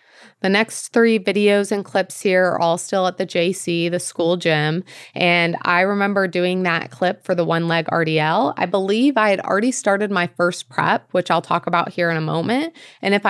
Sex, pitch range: female, 170-200 Hz